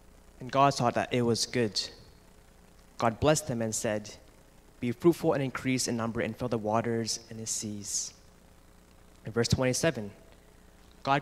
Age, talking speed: 20-39, 155 wpm